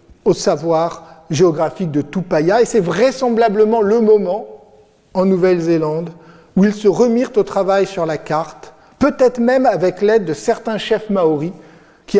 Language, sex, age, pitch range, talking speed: French, male, 50-69, 160-220 Hz, 150 wpm